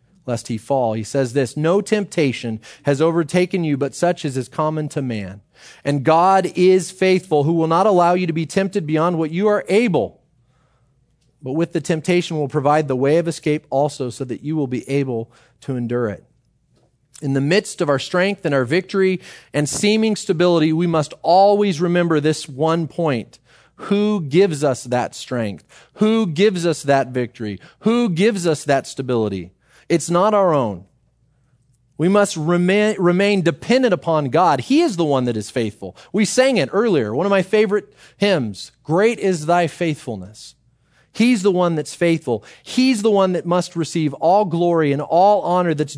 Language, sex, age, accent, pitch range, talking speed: English, male, 30-49, American, 135-185 Hz, 180 wpm